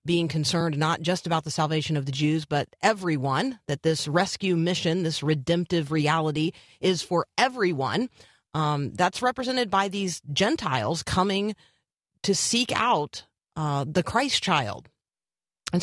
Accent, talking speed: American, 140 wpm